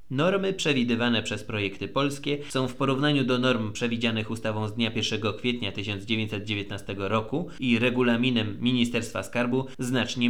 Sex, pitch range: male, 110-145 Hz